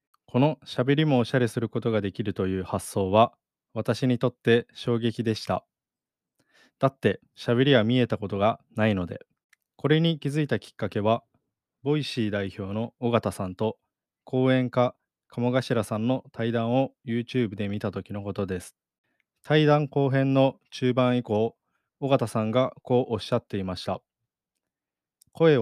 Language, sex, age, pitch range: Japanese, male, 20-39, 110-130 Hz